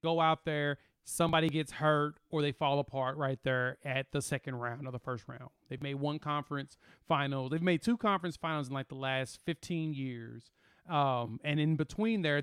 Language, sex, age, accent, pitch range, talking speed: English, male, 30-49, American, 140-185 Hz, 200 wpm